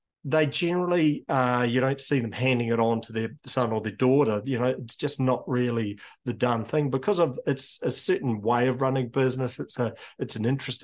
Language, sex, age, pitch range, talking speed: English, male, 40-59, 120-145 Hz, 215 wpm